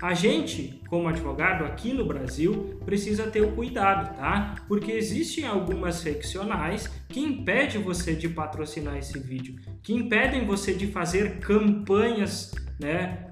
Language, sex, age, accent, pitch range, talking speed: Portuguese, male, 20-39, Brazilian, 155-225 Hz, 135 wpm